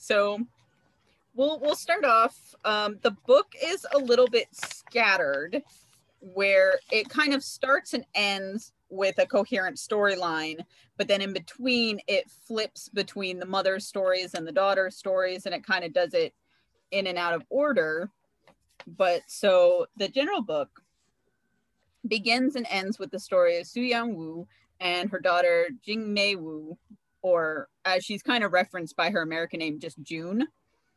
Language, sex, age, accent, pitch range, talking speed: English, female, 30-49, American, 175-240 Hz, 160 wpm